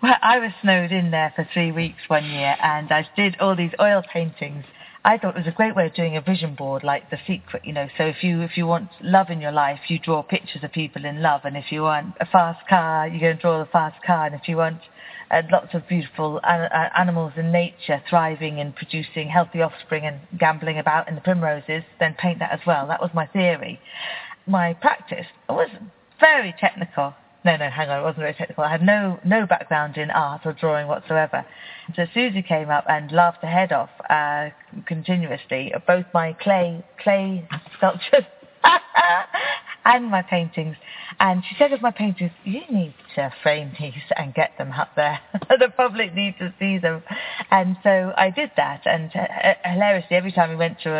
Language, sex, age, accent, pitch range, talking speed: English, female, 40-59, British, 155-185 Hz, 205 wpm